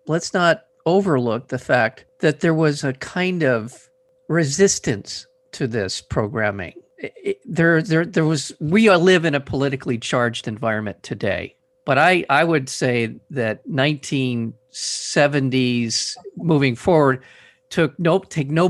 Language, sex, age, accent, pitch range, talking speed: English, male, 50-69, American, 125-170 Hz, 130 wpm